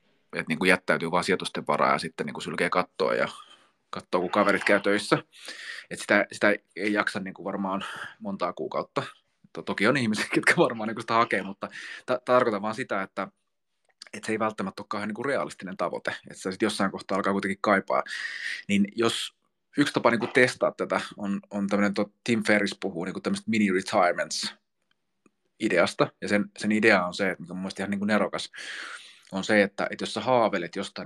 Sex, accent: male, native